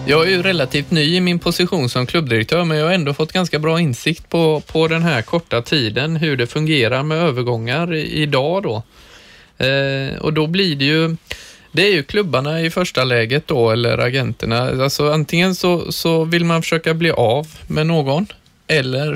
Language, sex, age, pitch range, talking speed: Swedish, male, 20-39, 125-155 Hz, 190 wpm